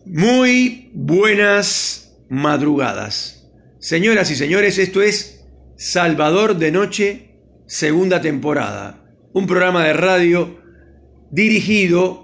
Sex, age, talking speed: male, 40-59, 90 wpm